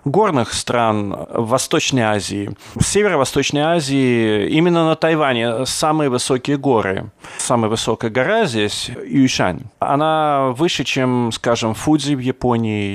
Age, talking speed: 30-49, 120 wpm